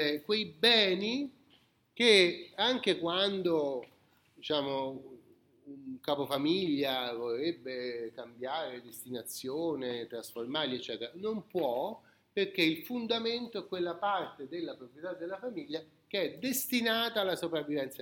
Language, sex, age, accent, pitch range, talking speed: Italian, male, 40-59, native, 155-220 Hz, 100 wpm